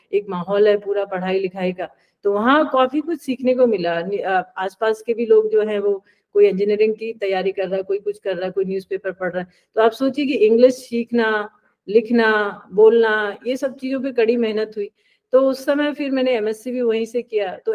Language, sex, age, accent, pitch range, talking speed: Hindi, female, 40-59, native, 190-245 Hz, 215 wpm